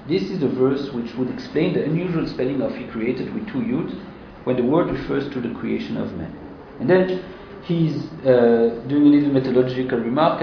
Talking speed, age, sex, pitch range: 195 wpm, 50-69, male, 125-170 Hz